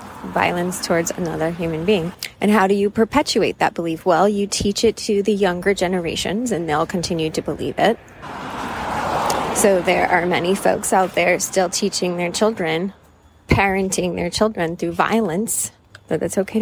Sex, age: female, 20-39